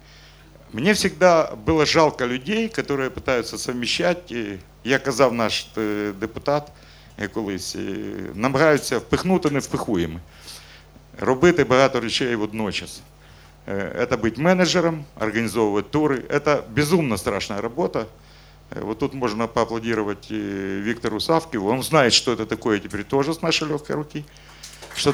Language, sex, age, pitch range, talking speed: Russian, male, 50-69, 110-145 Hz, 115 wpm